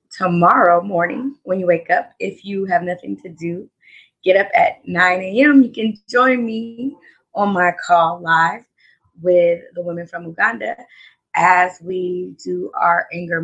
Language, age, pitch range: English, 20-39, 170-220 Hz